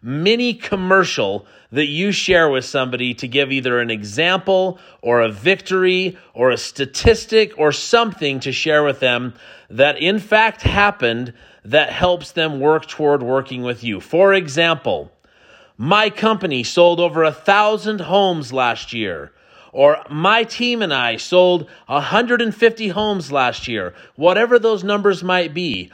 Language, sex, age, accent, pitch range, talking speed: English, male, 40-59, American, 145-220 Hz, 145 wpm